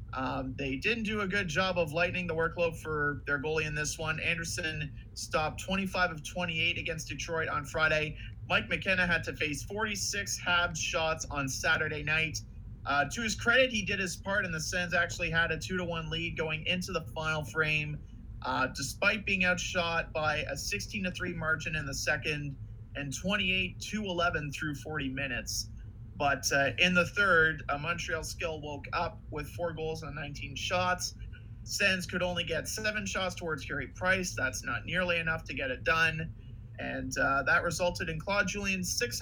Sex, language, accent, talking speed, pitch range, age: male, English, American, 175 wpm, 125-180 Hz, 30-49